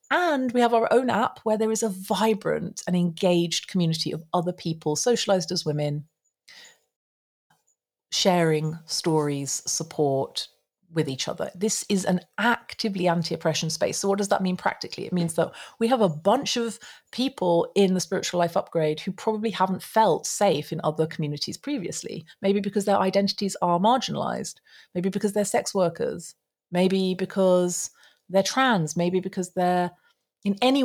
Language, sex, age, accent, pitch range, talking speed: English, female, 40-59, British, 170-210 Hz, 160 wpm